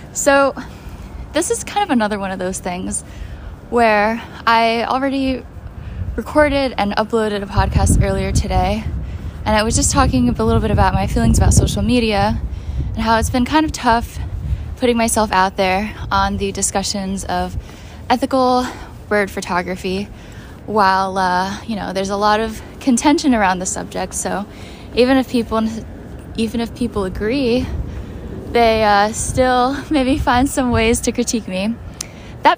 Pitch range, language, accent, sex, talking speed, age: 195-250 Hz, English, American, female, 155 wpm, 10-29